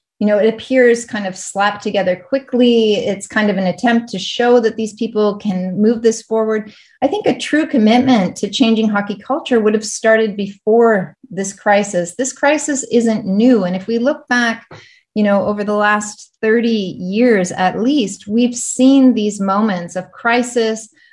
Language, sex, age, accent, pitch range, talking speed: English, female, 30-49, American, 190-235 Hz, 175 wpm